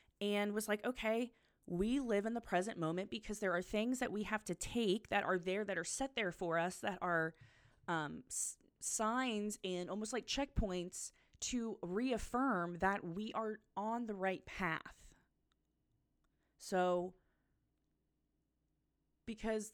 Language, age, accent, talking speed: English, 20-39, American, 145 wpm